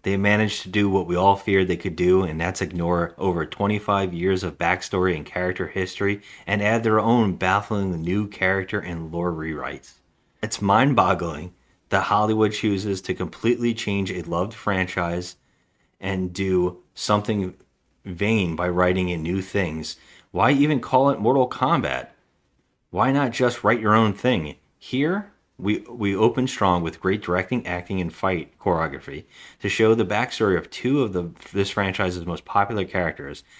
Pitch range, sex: 90-110 Hz, male